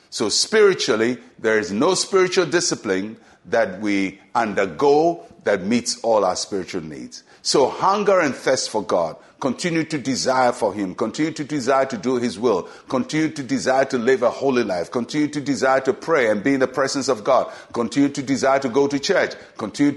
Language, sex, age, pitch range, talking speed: English, male, 50-69, 120-160 Hz, 185 wpm